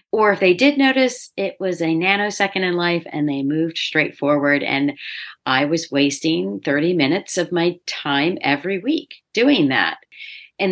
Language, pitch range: English, 150-180 Hz